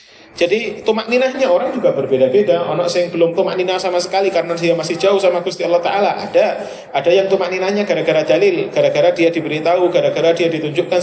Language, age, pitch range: Indonesian, 30-49, 165-190 Hz